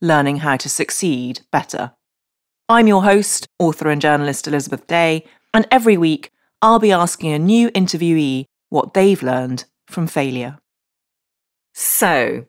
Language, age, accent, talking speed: English, 30-49, British, 135 wpm